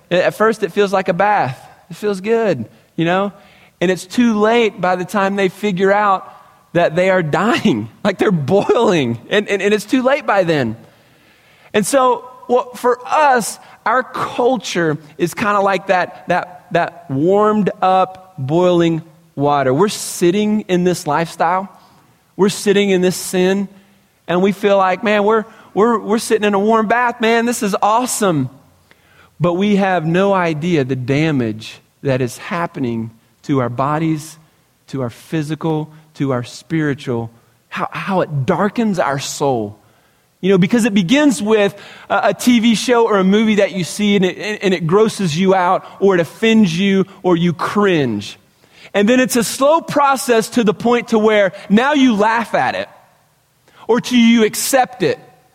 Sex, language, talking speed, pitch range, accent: male, English, 170 wpm, 160-215 Hz, American